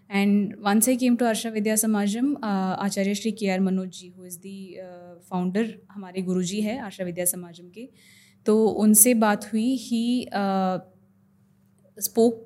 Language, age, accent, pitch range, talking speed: Hindi, 20-39, native, 190-235 Hz, 155 wpm